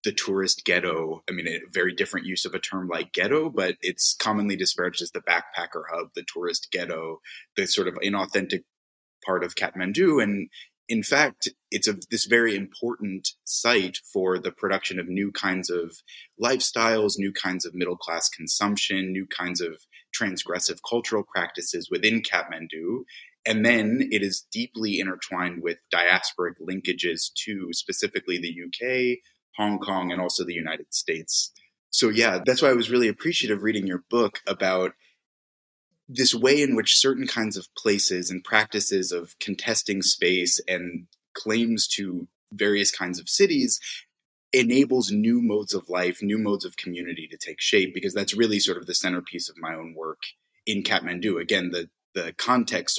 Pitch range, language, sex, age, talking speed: 90-115 Hz, English, male, 20-39, 160 wpm